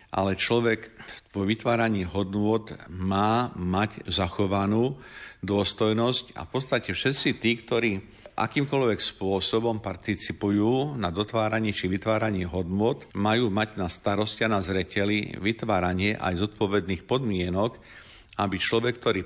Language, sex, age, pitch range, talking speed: Slovak, male, 50-69, 95-115 Hz, 115 wpm